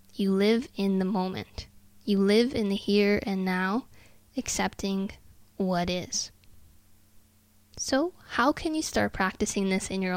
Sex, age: female, 10-29